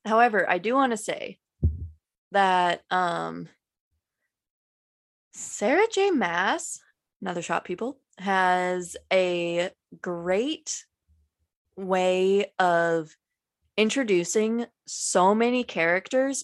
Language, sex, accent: English, female, American